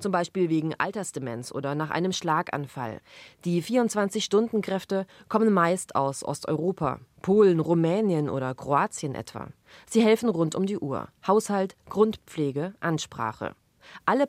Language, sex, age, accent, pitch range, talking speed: German, female, 20-39, German, 145-190 Hz, 120 wpm